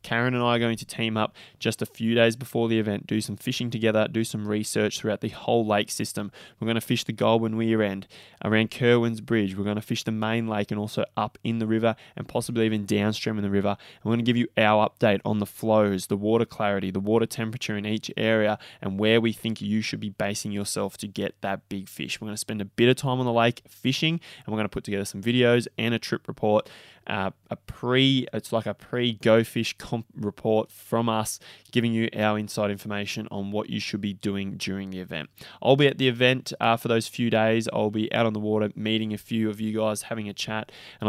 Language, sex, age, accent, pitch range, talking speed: English, male, 20-39, Australian, 105-115 Hz, 240 wpm